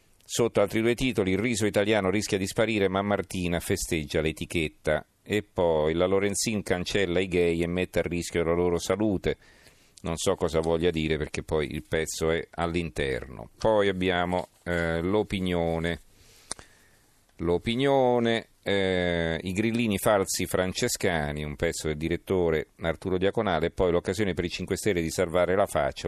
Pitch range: 85-100 Hz